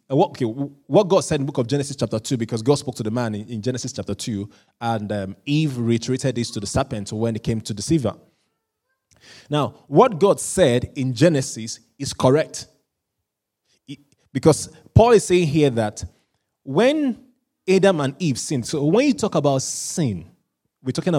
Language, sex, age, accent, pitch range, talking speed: English, male, 20-39, Nigerian, 115-160 Hz, 170 wpm